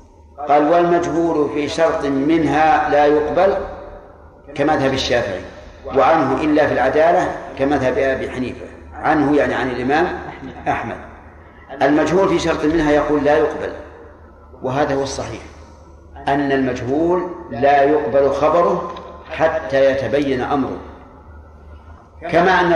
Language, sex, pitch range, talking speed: Arabic, male, 125-155 Hz, 115 wpm